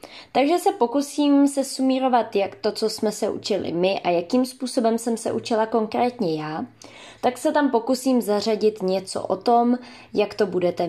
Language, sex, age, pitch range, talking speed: Czech, female, 20-39, 200-260 Hz, 165 wpm